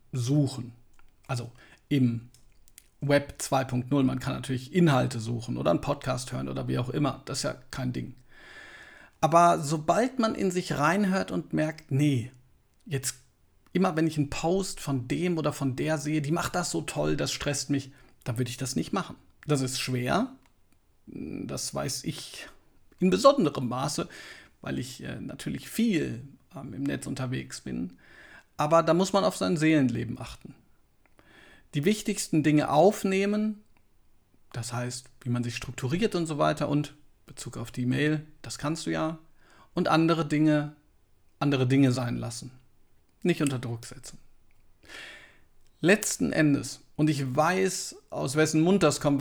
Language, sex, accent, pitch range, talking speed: German, male, German, 125-160 Hz, 155 wpm